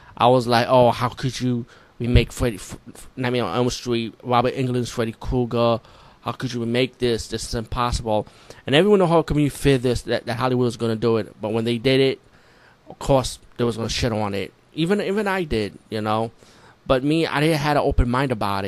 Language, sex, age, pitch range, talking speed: English, male, 20-39, 115-135 Hz, 235 wpm